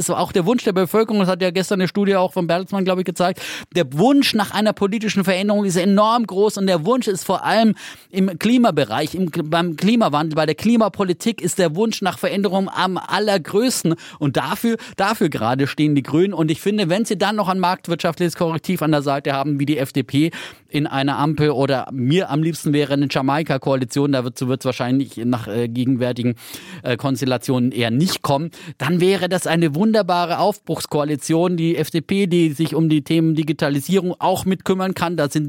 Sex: male